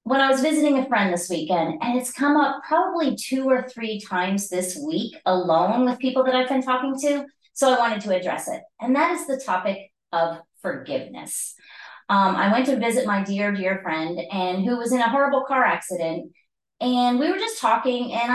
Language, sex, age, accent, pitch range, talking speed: English, female, 30-49, American, 205-265 Hz, 205 wpm